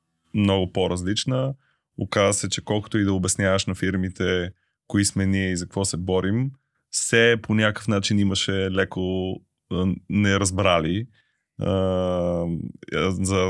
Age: 20-39